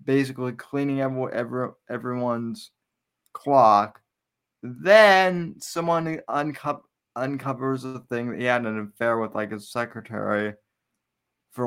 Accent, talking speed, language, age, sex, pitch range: American, 100 wpm, English, 20-39, male, 115-145 Hz